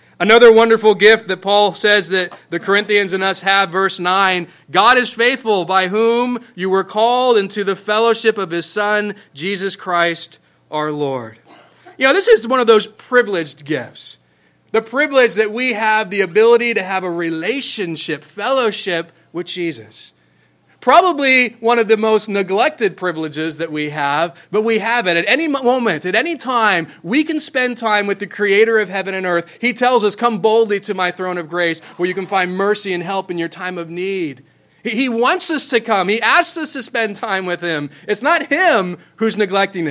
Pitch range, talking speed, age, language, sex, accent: 175-225 Hz, 190 wpm, 30-49, English, male, American